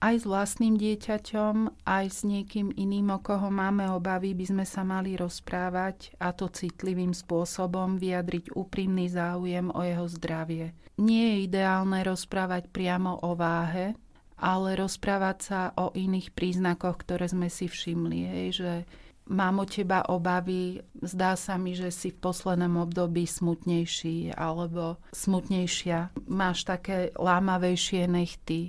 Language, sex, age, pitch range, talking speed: Slovak, female, 40-59, 175-190 Hz, 135 wpm